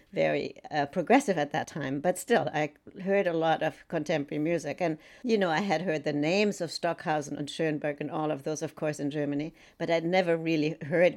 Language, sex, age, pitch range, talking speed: English, female, 60-79, 155-195 Hz, 215 wpm